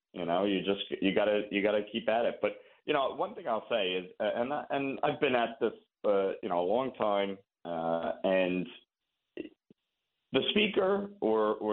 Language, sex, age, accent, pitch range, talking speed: English, male, 40-59, American, 105-135 Hz, 185 wpm